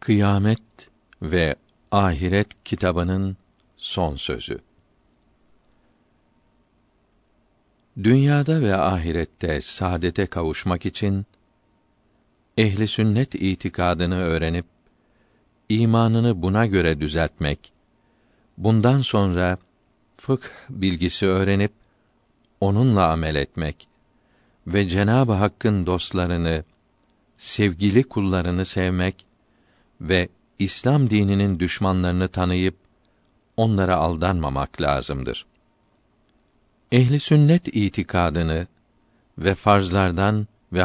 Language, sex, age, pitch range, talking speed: Turkish, male, 50-69, 90-110 Hz, 70 wpm